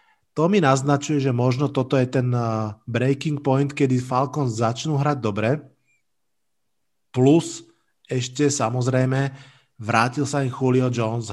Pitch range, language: 120-135 Hz, Slovak